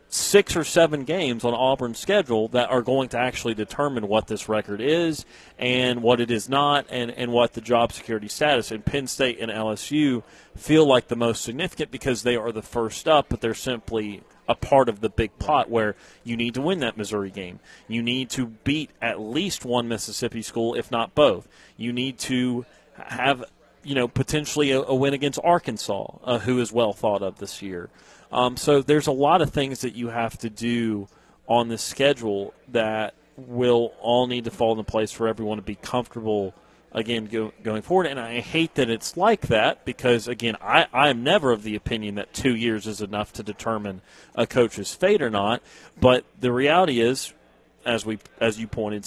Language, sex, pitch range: English, male, 110-130 Hz